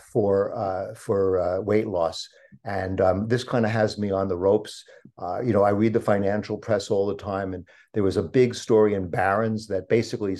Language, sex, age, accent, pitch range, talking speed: English, male, 50-69, American, 95-110 Hz, 215 wpm